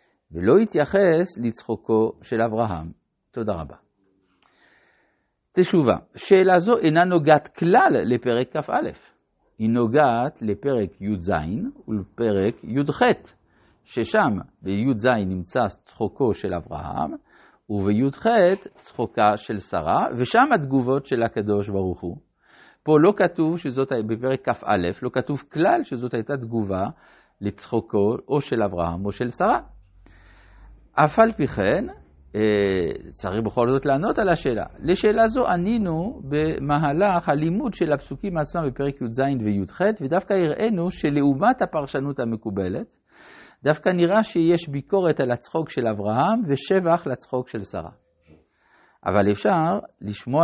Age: 50-69